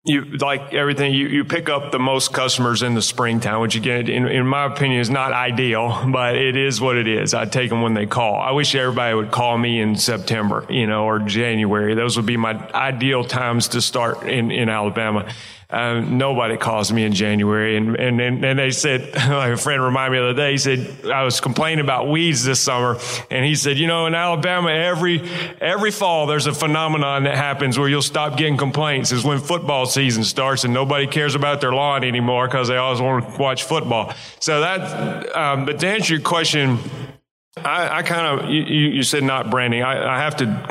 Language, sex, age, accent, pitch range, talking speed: English, male, 40-59, American, 120-145 Hz, 215 wpm